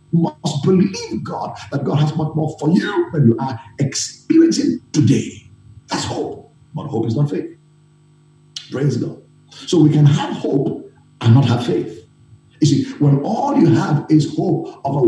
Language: English